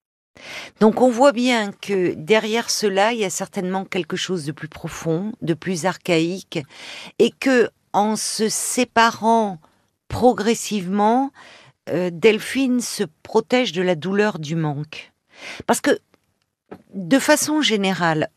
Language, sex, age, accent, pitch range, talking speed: French, female, 50-69, French, 165-220 Hz, 120 wpm